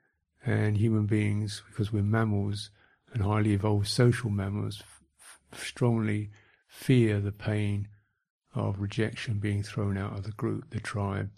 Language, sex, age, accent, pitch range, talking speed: English, male, 50-69, British, 105-120 Hz, 140 wpm